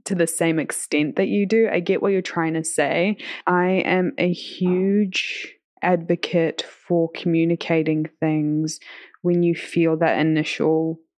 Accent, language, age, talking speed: Australian, English, 20-39, 145 wpm